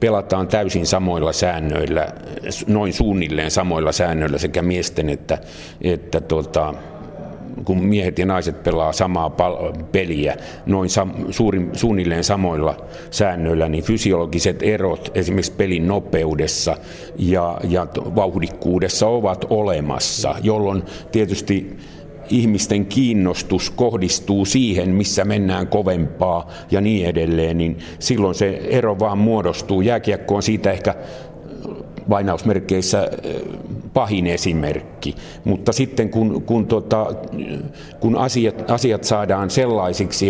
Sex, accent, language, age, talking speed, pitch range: male, native, Finnish, 50-69, 105 wpm, 90-105 Hz